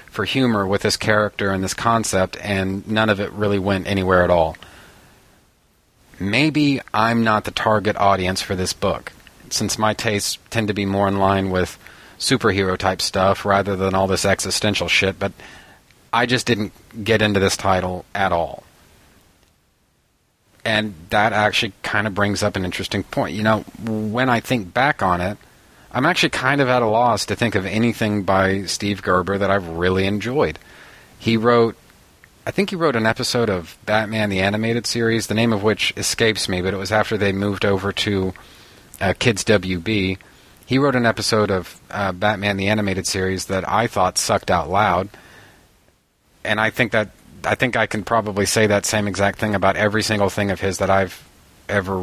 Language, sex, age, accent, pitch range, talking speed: English, male, 40-59, American, 95-110 Hz, 180 wpm